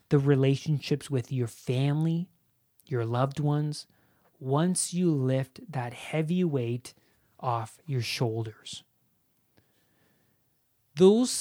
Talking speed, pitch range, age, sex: 95 wpm, 125-165 Hz, 30-49, male